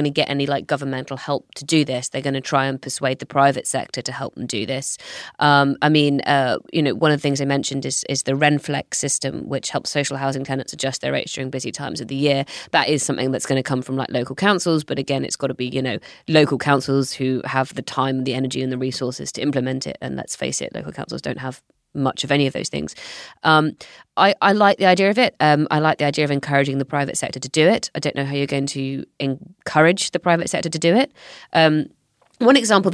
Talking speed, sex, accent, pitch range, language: 255 wpm, female, British, 135-155 Hz, English